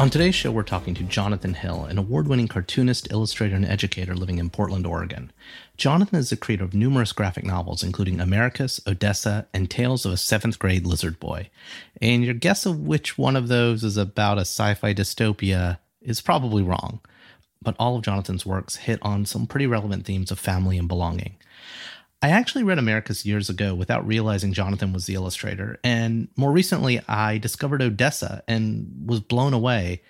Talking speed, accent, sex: 175 wpm, American, male